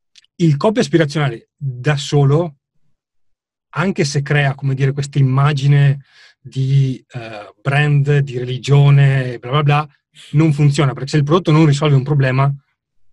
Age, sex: 30-49, male